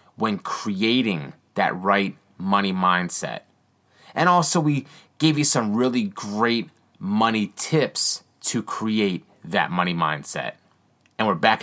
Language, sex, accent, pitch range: English, male, American, 105-150 Hz